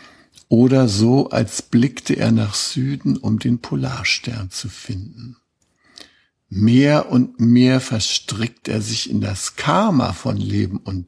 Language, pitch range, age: German, 105-125 Hz, 60-79